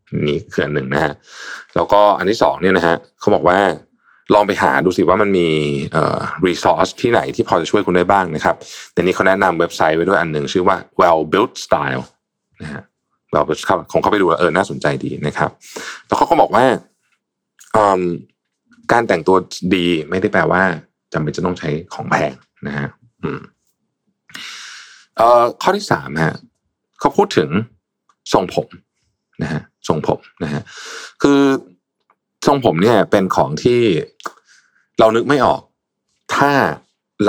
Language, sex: Thai, male